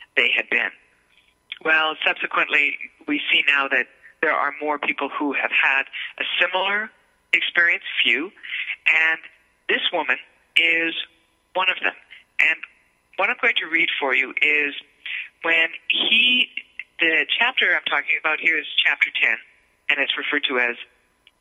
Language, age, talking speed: English, 40-59, 145 wpm